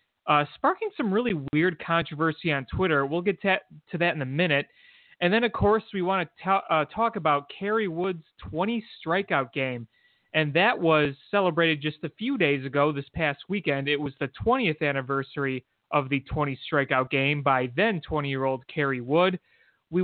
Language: English